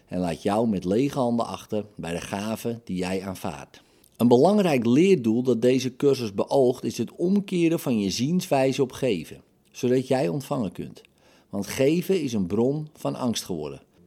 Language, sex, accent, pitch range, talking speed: Dutch, male, Dutch, 105-140 Hz, 170 wpm